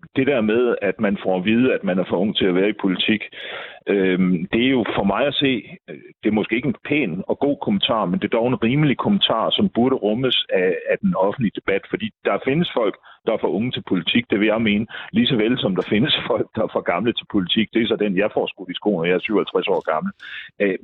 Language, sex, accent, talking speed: Danish, male, native, 265 wpm